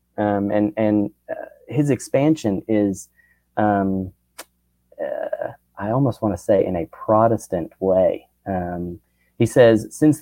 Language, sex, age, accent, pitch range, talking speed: English, male, 30-49, American, 100-150 Hz, 130 wpm